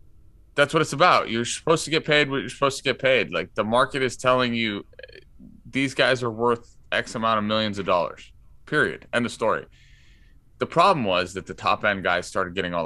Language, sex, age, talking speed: English, male, 30-49, 215 wpm